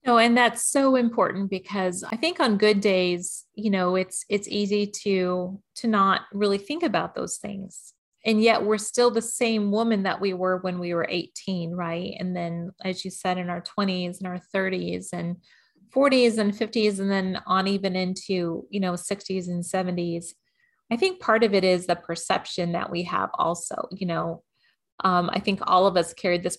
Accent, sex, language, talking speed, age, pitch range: American, female, English, 195 wpm, 30-49, 180-215 Hz